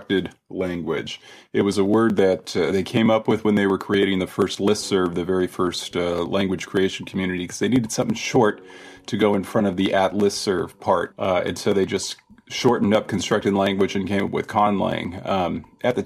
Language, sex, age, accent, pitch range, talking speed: English, male, 30-49, American, 85-100 Hz, 210 wpm